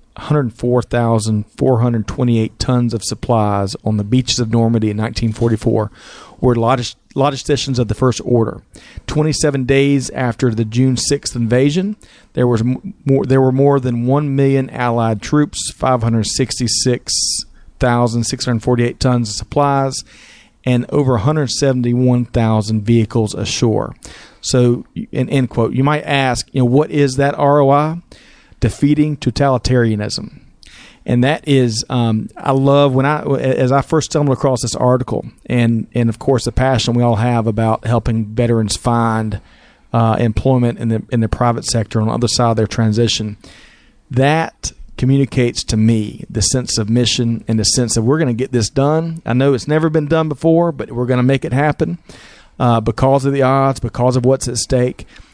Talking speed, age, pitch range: 155 wpm, 40-59, 115-135 Hz